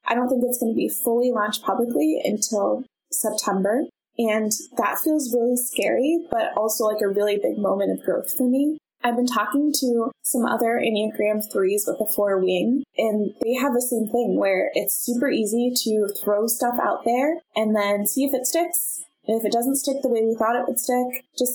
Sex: female